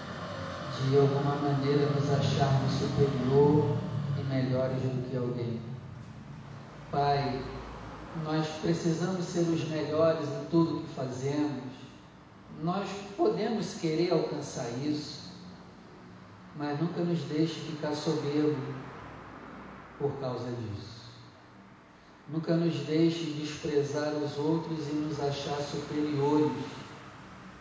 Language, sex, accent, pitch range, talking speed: Portuguese, male, Brazilian, 135-155 Hz, 100 wpm